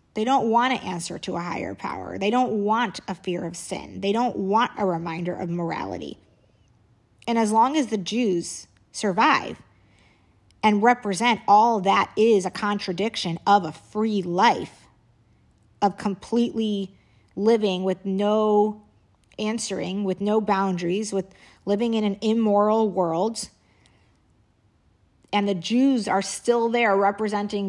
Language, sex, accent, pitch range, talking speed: English, female, American, 185-215 Hz, 135 wpm